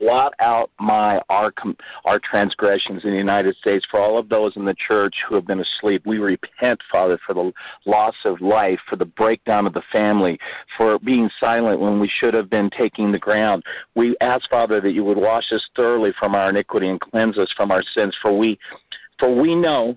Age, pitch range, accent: 50-69, 105-135 Hz, American